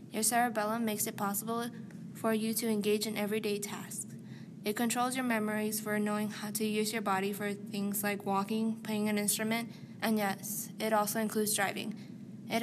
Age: 10-29